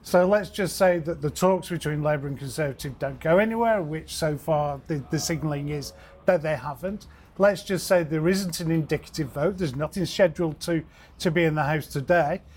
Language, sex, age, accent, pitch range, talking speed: English, male, 40-59, British, 160-190 Hz, 200 wpm